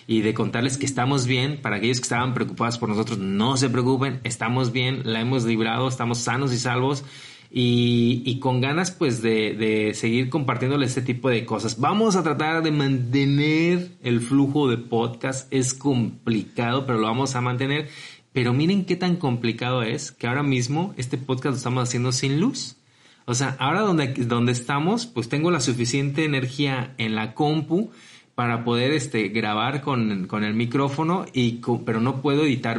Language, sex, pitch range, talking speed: Spanish, male, 115-140 Hz, 180 wpm